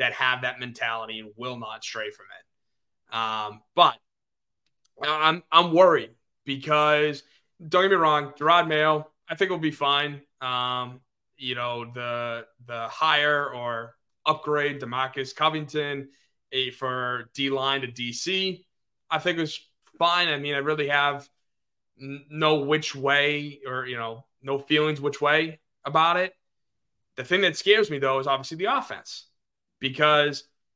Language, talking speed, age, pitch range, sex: English, 150 wpm, 20-39, 120-150 Hz, male